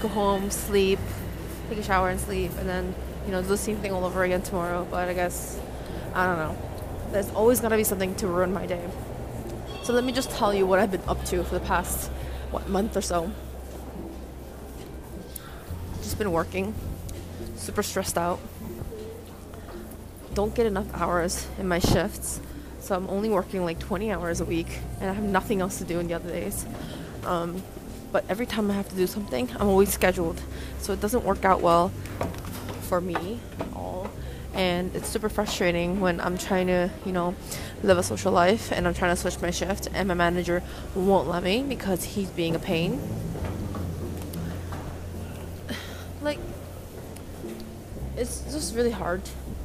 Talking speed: 175 wpm